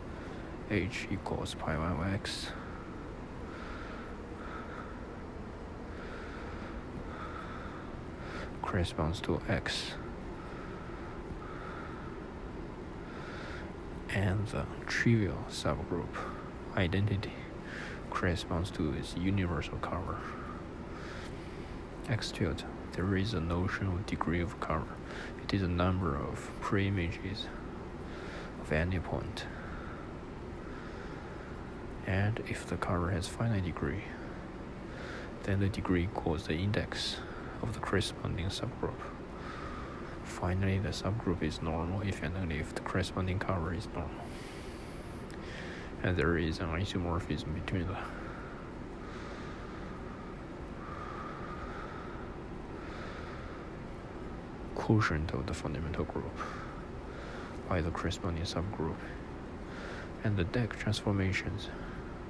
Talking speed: 85 wpm